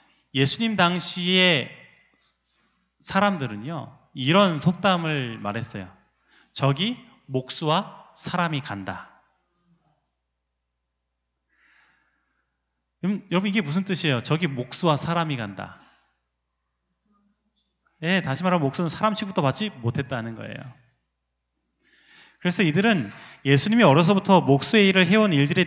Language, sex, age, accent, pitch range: Korean, male, 30-49, native, 115-180 Hz